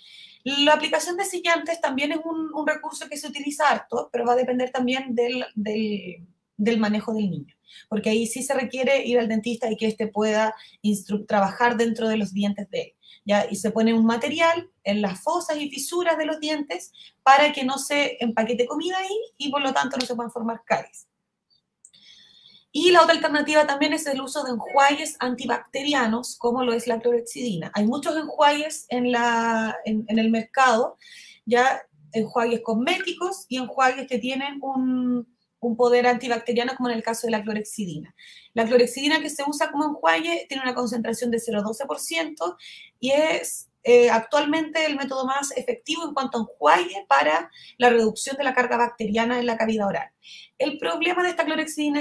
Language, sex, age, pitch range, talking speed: Spanish, female, 20-39, 225-285 Hz, 180 wpm